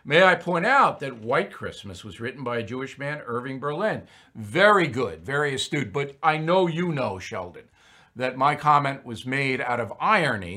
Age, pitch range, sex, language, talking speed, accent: 50-69, 120-170 Hz, male, English, 185 wpm, American